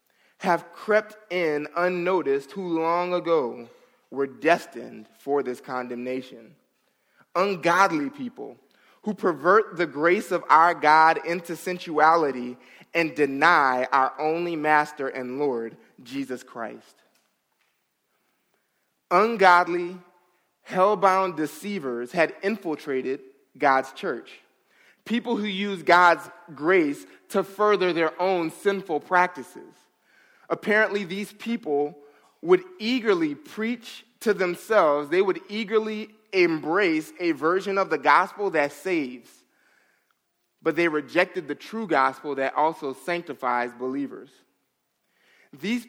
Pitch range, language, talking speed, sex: 145-200 Hz, English, 105 wpm, male